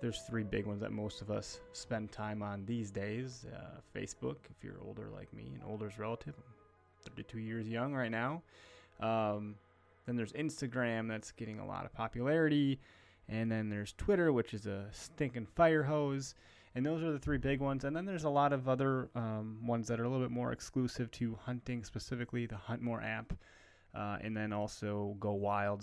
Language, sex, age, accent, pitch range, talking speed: English, male, 20-39, American, 105-125 Hz, 195 wpm